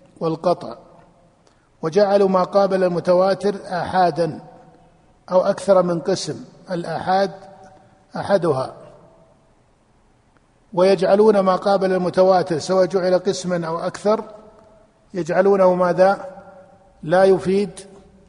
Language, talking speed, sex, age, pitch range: Arabic, 80 wpm, male, 50-69, 175-195 Hz